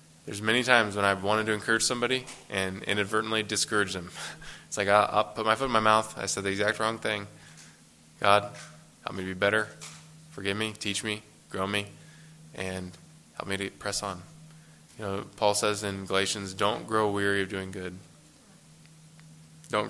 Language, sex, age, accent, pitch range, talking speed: English, male, 20-39, American, 95-115 Hz, 180 wpm